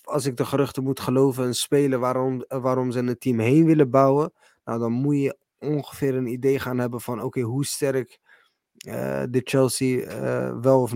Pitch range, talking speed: 120-135 Hz, 195 wpm